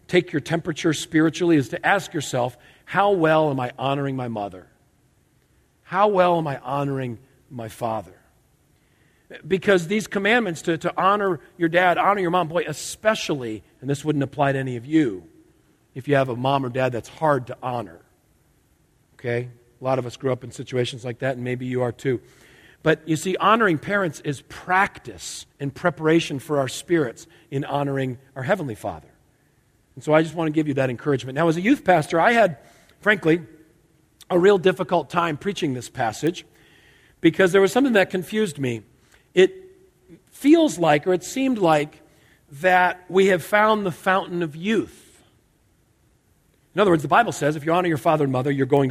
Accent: American